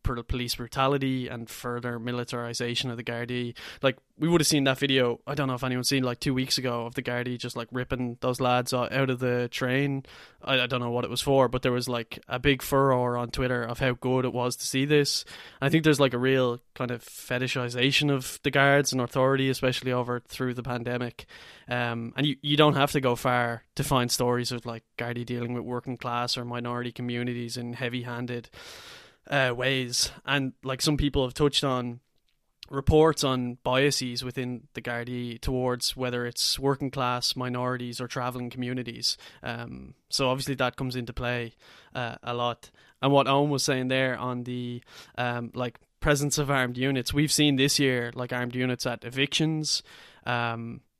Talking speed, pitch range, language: 195 wpm, 120-135 Hz, English